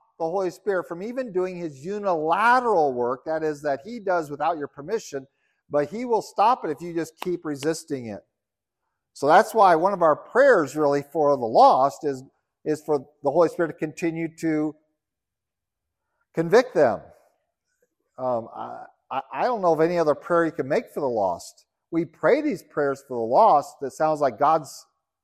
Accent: American